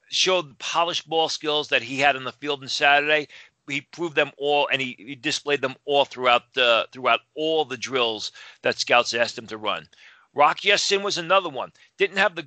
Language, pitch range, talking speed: English, 130-150 Hz, 205 wpm